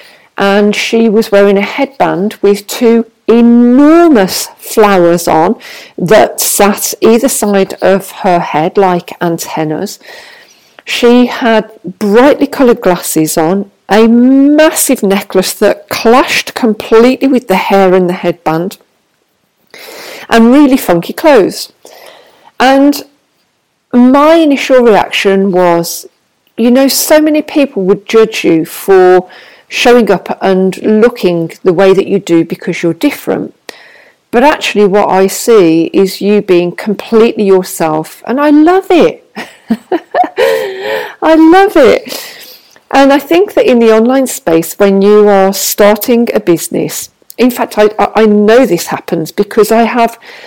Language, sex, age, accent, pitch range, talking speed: English, female, 50-69, British, 190-265 Hz, 130 wpm